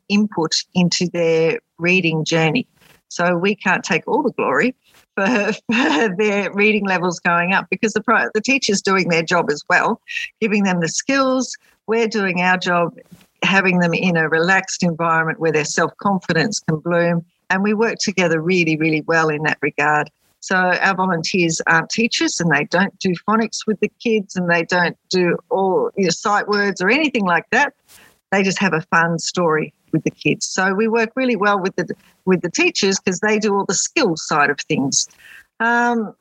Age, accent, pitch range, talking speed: 50-69, Australian, 170-220 Hz, 185 wpm